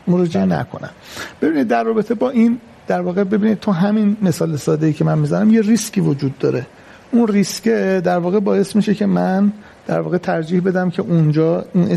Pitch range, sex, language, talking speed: 155-195 Hz, male, Persian, 165 wpm